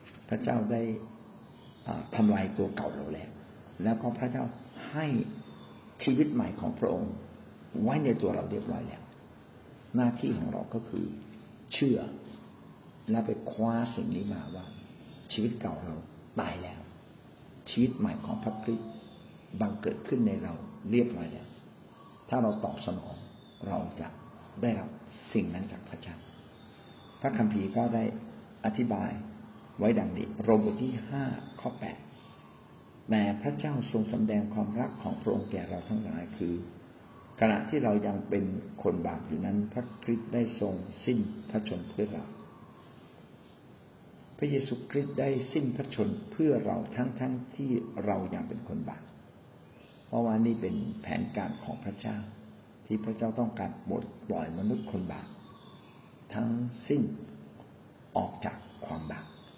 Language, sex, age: Thai, male, 60-79